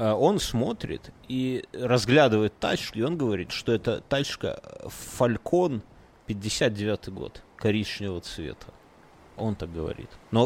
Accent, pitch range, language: native, 100-125 Hz, Russian